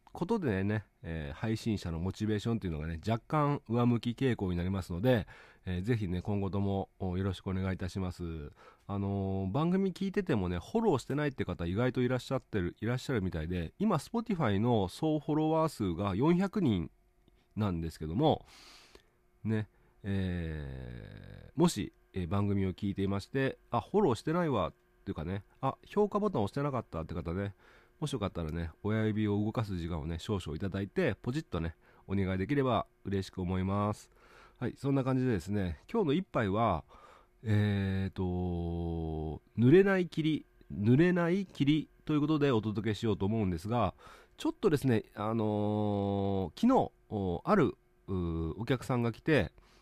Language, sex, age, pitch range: Japanese, male, 40-59, 95-130 Hz